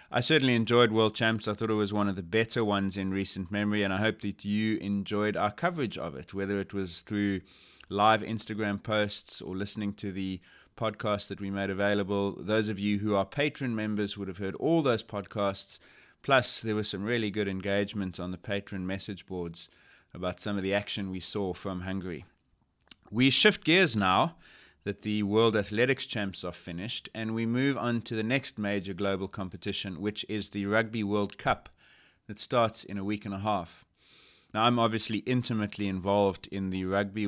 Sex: male